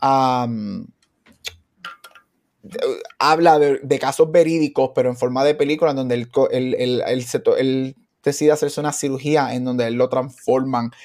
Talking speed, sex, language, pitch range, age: 165 wpm, male, Spanish, 125-150 Hz, 20-39